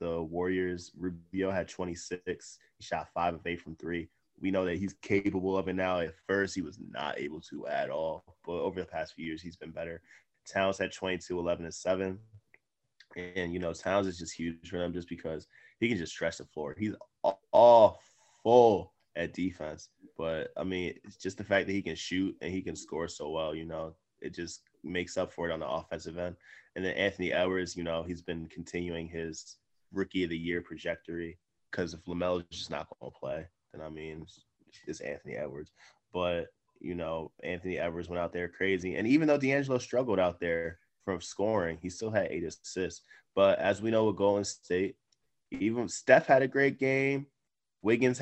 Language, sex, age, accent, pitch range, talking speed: English, male, 20-39, American, 85-100 Hz, 200 wpm